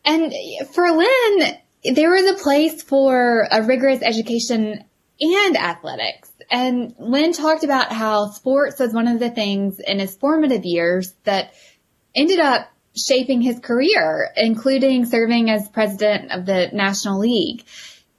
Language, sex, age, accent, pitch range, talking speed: English, female, 10-29, American, 200-275 Hz, 140 wpm